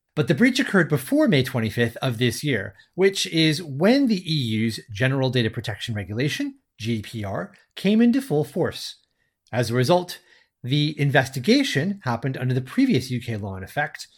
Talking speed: 155 wpm